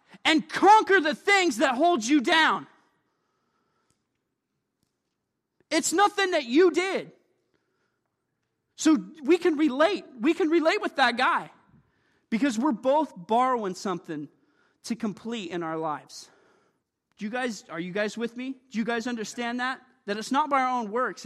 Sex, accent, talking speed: male, American, 150 wpm